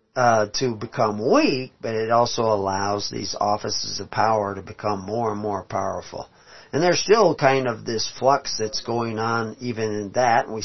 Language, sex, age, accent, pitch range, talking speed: English, male, 50-69, American, 105-120 Hz, 180 wpm